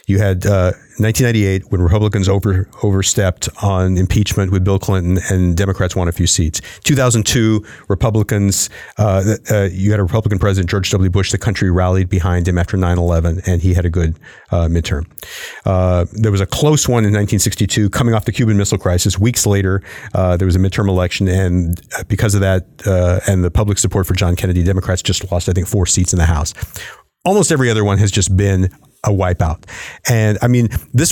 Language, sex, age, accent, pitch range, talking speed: English, male, 40-59, American, 95-105 Hz, 195 wpm